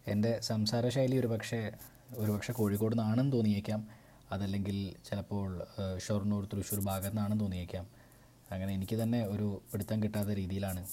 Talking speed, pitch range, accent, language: 125 wpm, 100-125 Hz, native, Malayalam